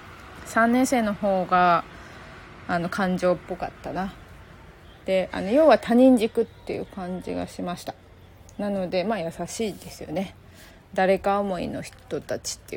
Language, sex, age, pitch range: Japanese, female, 20-39, 170-235 Hz